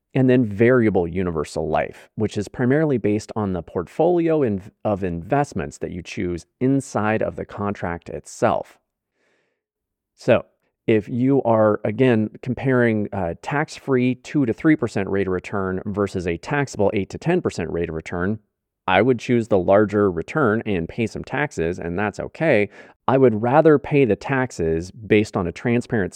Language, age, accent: English, 30-49, American